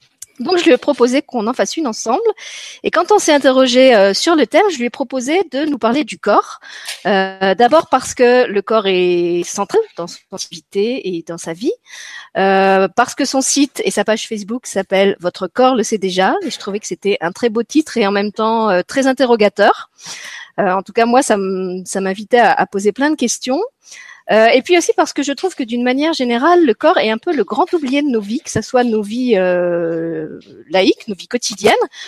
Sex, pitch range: female, 190-270 Hz